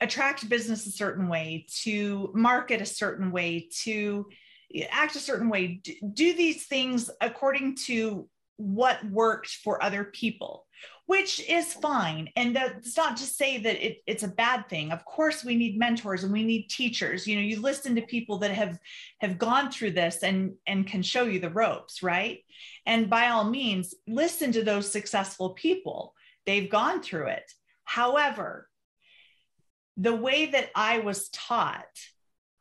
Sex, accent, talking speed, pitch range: female, American, 160 wpm, 195-250 Hz